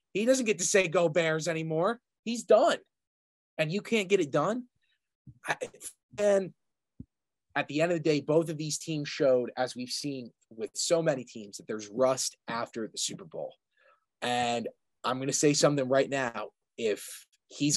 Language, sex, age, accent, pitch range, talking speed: English, male, 20-39, American, 130-170 Hz, 175 wpm